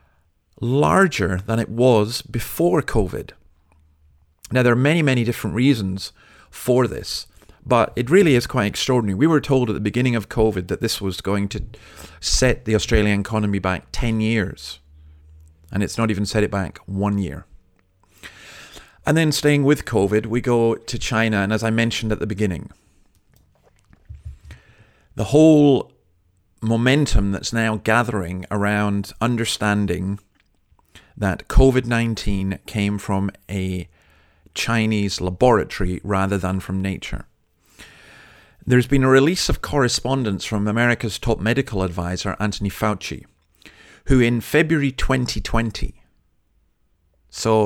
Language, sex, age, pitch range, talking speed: English, male, 40-59, 95-120 Hz, 130 wpm